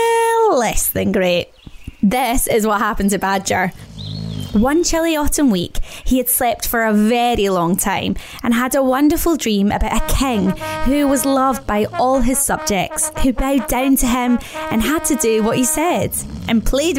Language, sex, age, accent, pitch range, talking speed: English, female, 20-39, British, 210-295 Hz, 175 wpm